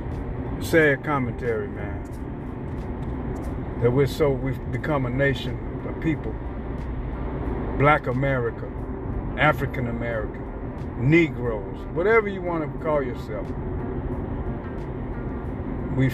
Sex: male